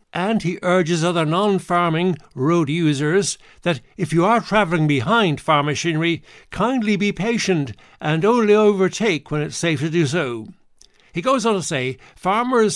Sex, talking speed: male, 155 wpm